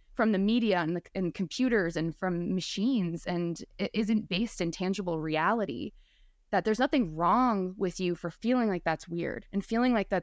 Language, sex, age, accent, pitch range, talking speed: English, female, 20-39, American, 170-210 Hz, 190 wpm